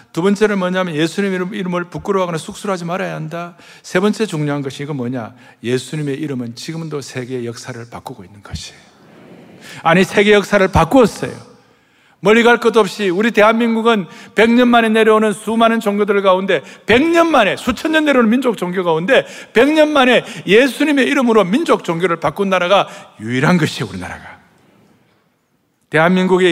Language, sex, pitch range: Korean, male, 165-225 Hz